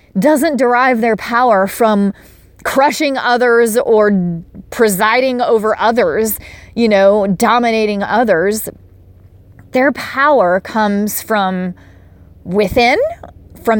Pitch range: 195-250 Hz